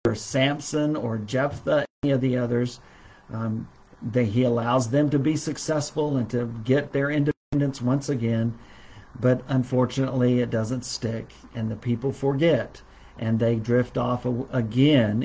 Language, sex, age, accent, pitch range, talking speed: English, male, 50-69, American, 115-145 Hz, 145 wpm